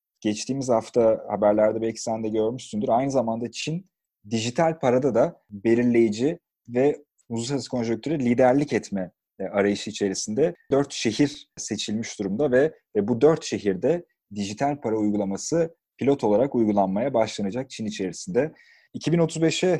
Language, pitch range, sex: Turkish, 105-145 Hz, male